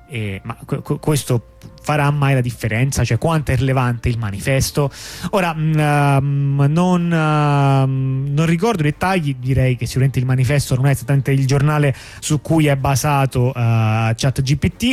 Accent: native